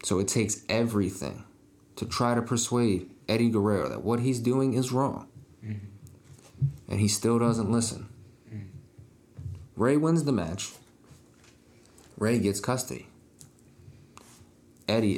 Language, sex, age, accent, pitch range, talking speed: English, male, 30-49, American, 100-125 Hz, 115 wpm